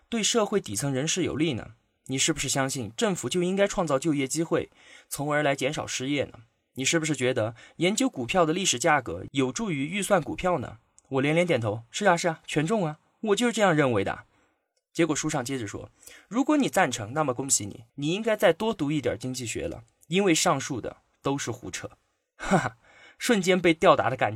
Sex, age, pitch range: male, 20-39, 125-175 Hz